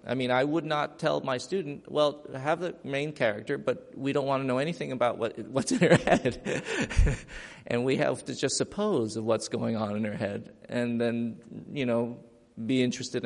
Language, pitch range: English, 115-140 Hz